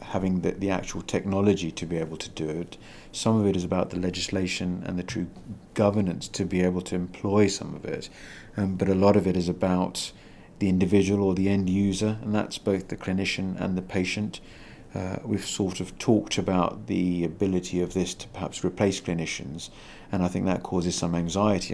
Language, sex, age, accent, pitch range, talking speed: English, male, 50-69, British, 90-105 Hz, 200 wpm